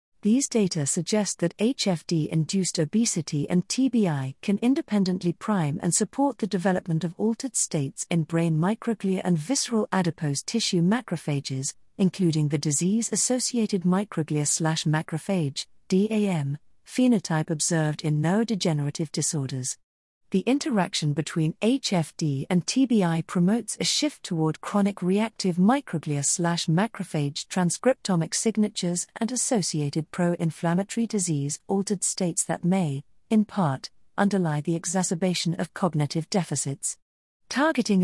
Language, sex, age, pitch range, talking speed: English, female, 40-59, 160-205 Hz, 105 wpm